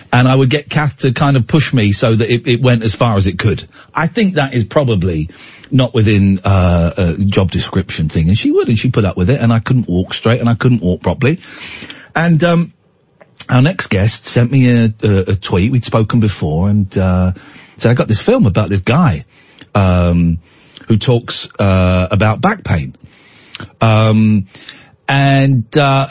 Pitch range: 100-135 Hz